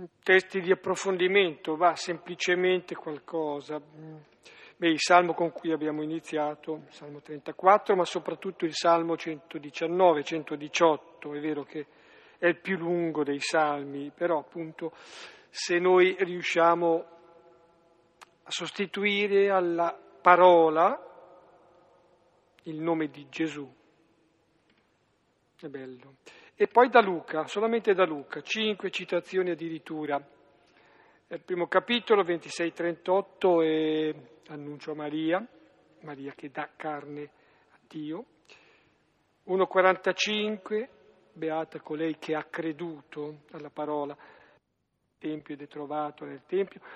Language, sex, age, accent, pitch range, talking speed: Italian, male, 50-69, native, 155-185 Hz, 105 wpm